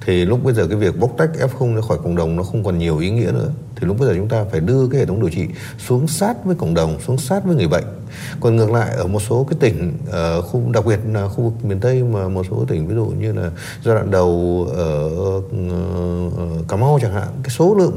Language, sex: Vietnamese, male